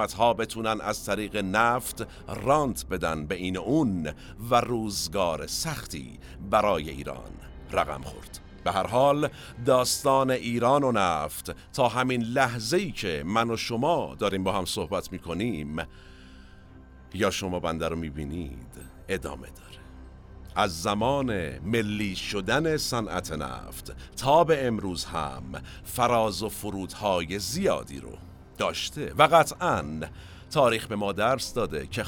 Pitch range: 80-120 Hz